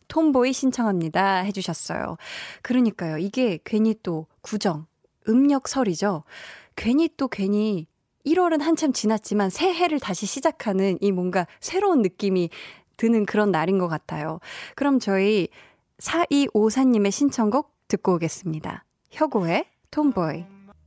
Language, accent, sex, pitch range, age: Korean, native, female, 185-265 Hz, 20-39